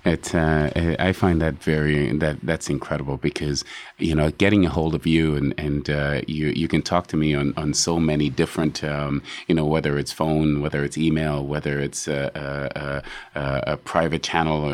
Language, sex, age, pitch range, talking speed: English, male, 30-49, 75-85 Hz, 195 wpm